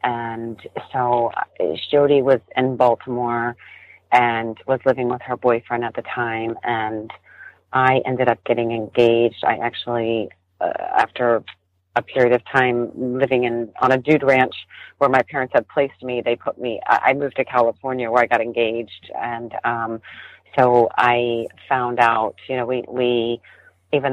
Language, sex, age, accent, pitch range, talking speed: English, female, 40-59, American, 110-125 Hz, 155 wpm